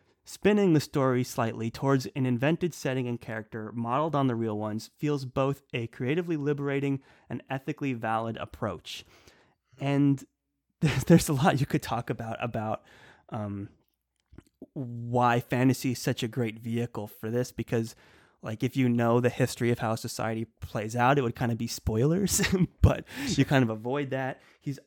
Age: 20-39